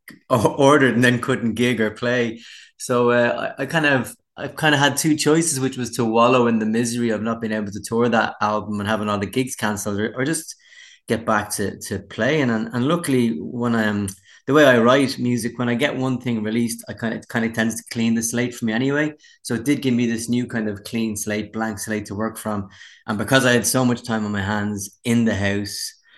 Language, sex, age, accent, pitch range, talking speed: English, male, 20-39, Irish, 105-125 Hz, 250 wpm